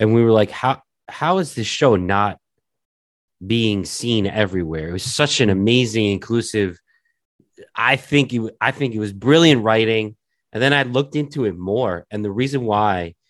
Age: 30-49